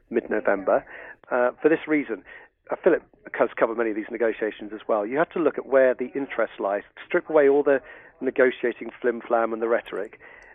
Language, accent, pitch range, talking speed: English, British, 115-140 Hz, 180 wpm